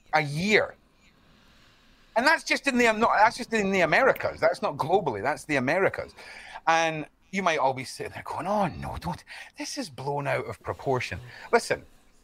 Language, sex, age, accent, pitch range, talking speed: English, male, 30-49, British, 130-195 Hz, 175 wpm